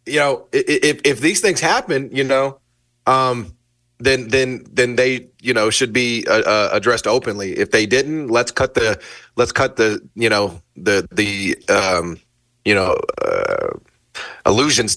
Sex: male